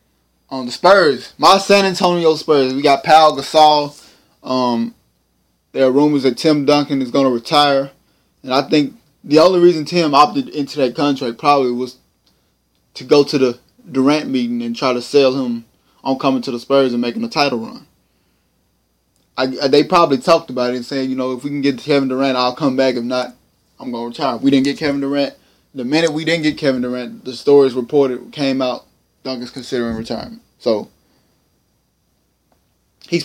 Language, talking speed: English, 190 wpm